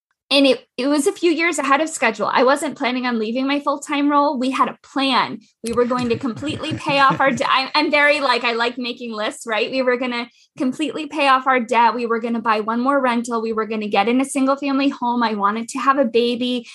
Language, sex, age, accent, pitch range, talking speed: English, female, 20-39, American, 210-255 Hz, 255 wpm